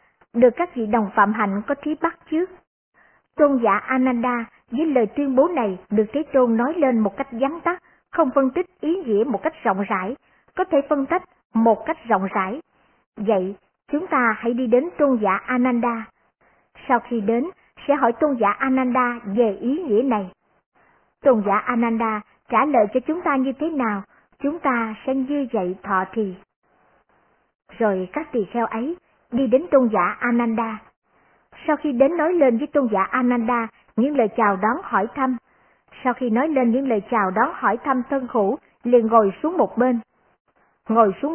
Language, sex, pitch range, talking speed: Vietnamese, male, 225-280 Hz, 185 wpm